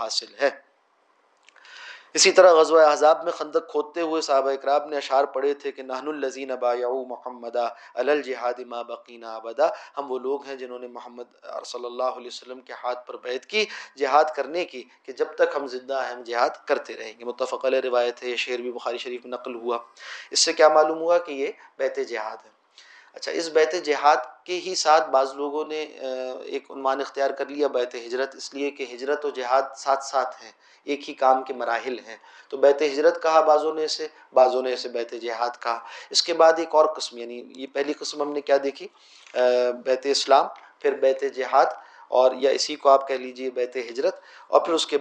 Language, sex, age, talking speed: Urdu, male, 30-49, 205 wpm